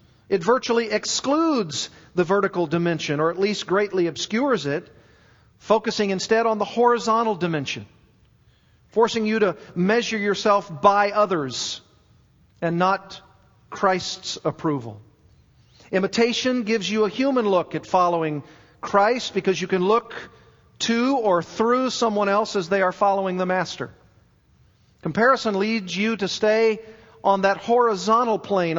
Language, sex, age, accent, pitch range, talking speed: English, male, 50-69, American, 165-210 Hz, 130 wpm